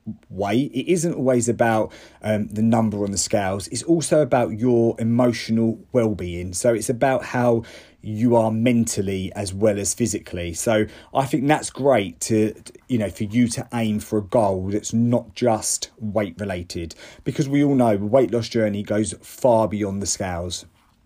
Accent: British